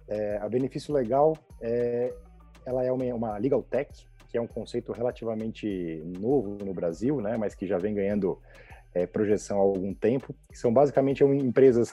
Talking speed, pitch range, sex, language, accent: 150 wpm, 110-135 Hz, male, Portuguese, Brazilian